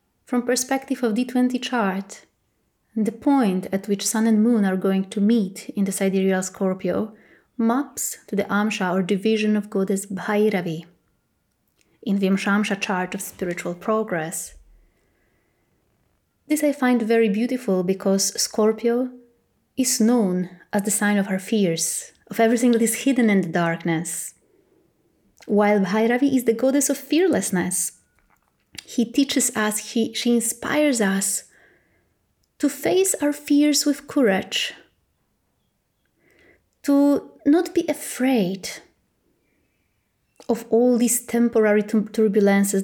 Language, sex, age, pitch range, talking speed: English, female, 20-39, 195-245 Hz, 120 wpm